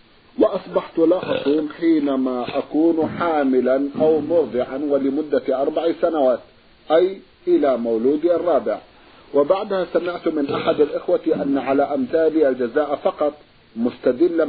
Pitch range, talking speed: 135-175 Hz, 110 wpm